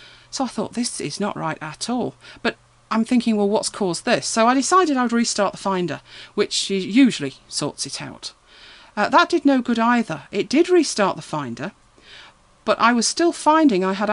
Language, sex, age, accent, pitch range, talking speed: English, female, 40-59, British, 170-235 Hz, 200 wpm